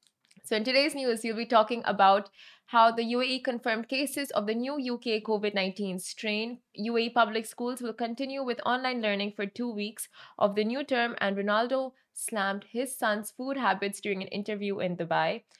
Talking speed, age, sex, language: 175 wpm, 20-39, female, Arabic